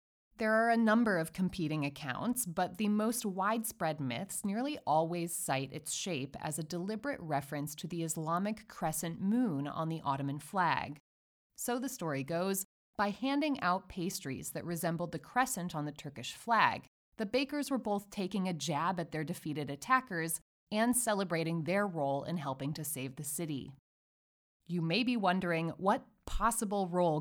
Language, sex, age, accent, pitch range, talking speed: English, female, 30-49, American, 145-205 Hz, 165 wpm